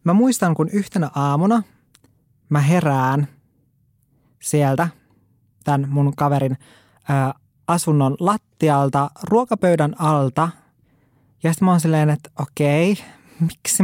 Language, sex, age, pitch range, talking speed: Finnish, male, 20-39, 135-175 Hz, 110 wpm